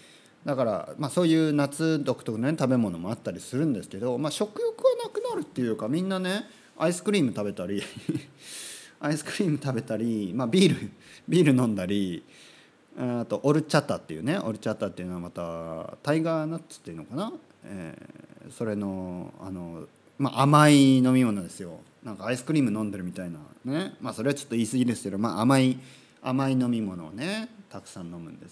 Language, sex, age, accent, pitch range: Japanese, male, 40-59, native, 100-155 Hz